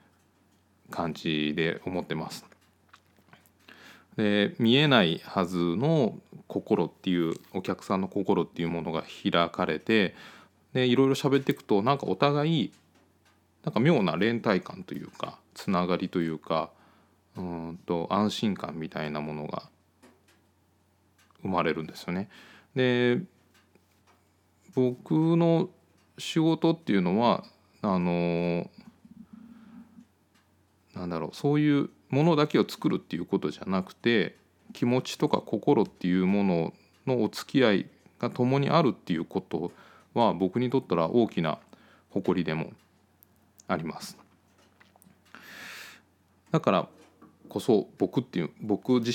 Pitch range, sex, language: 85-125 Hz, male, Japanese